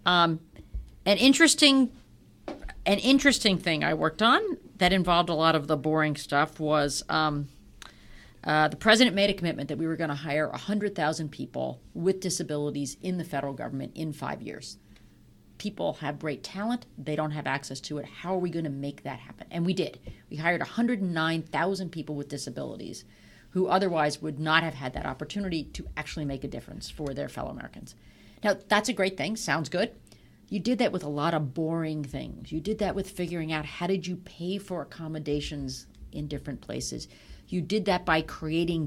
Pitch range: 145-185 Hz